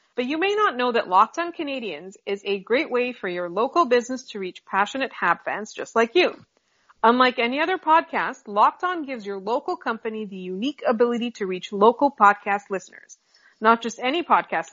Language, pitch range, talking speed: English, 210-275 Hz, 190 wpm